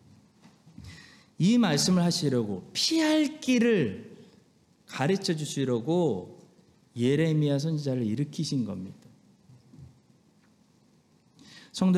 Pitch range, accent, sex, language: 135-210 Hz, native, male, Korean